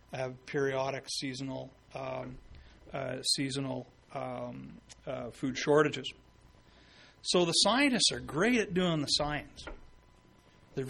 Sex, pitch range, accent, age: male, 130-155 Hz, American, 40-59